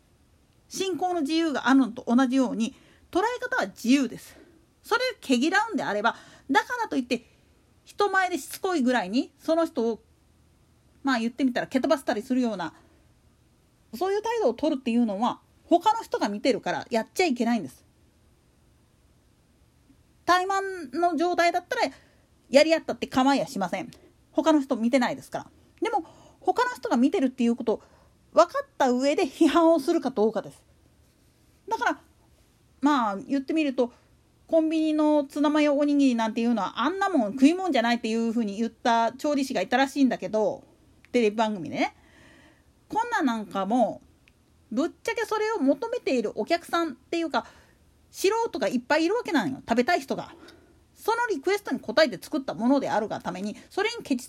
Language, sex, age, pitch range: Japanese, female, 40-59, 240-350 Hz